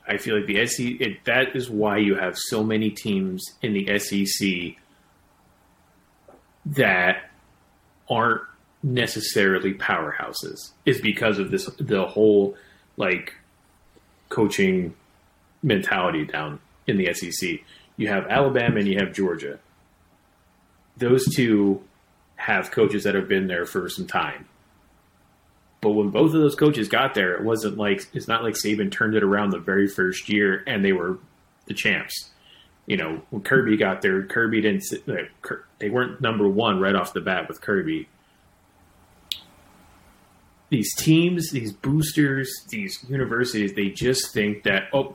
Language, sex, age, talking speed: English, male, 30-49, 145 wpm